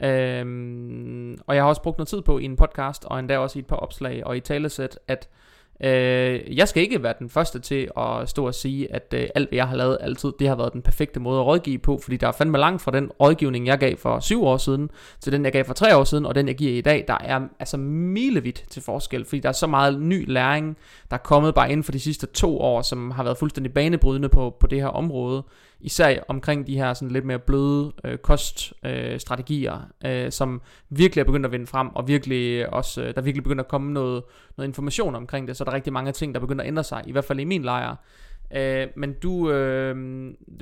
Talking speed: 245 wpm